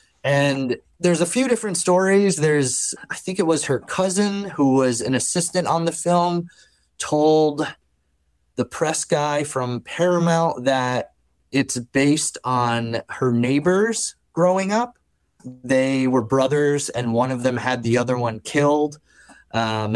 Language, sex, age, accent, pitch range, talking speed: English, male, 20-39, American, 115-160 Hz, 140 wpm